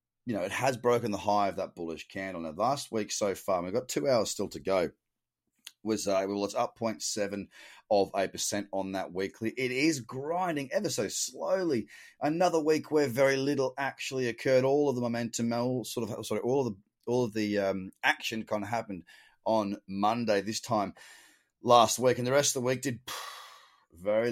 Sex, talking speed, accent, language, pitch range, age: male, 200 wpm, Australian, English, 110-140 Hz, 30-49